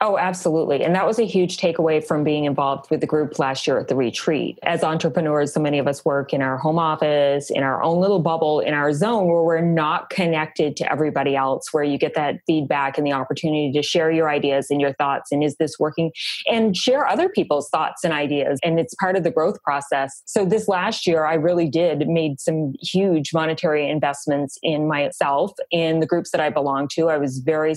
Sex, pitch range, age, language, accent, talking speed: female, 150-175 Hz, 30-49, English, American, 220 wpm